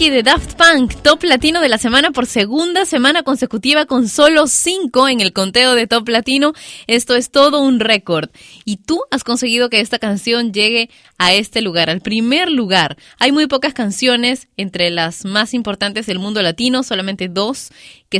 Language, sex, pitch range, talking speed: Spanish, female, 195-265 Hz, 180 wpm